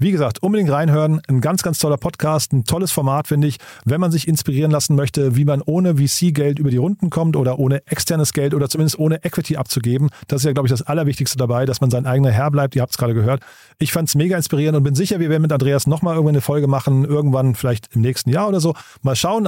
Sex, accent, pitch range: male, German, 135-160 Hz